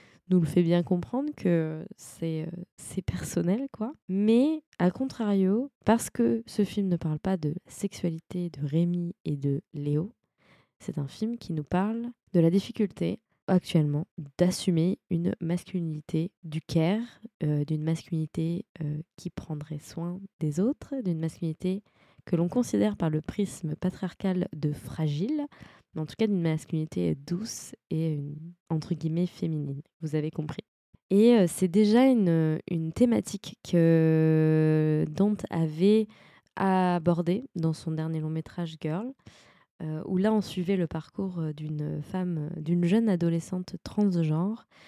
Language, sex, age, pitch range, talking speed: French, female, 20-39, 160-195 Hz, 140 wpm